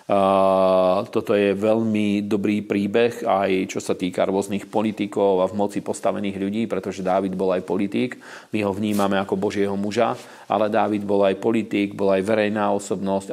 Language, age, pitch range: Slovak, 40-59, 100-110 Hz